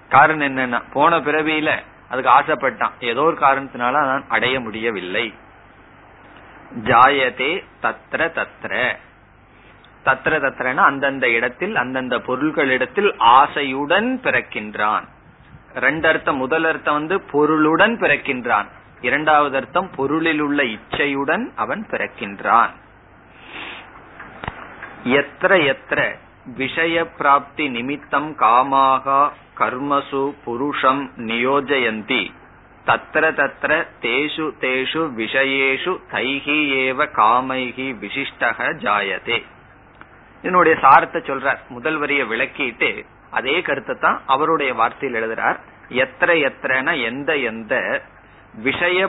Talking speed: 75 wpm